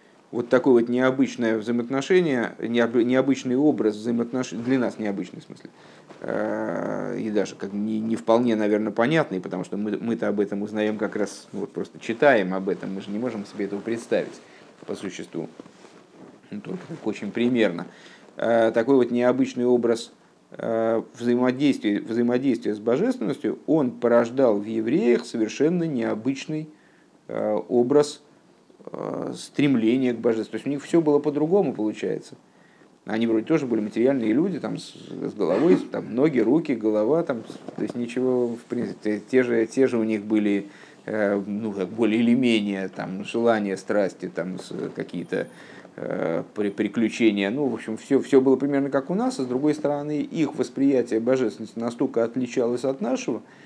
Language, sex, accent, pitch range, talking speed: Russian, male, native, 110-130 Hz, 150 wpm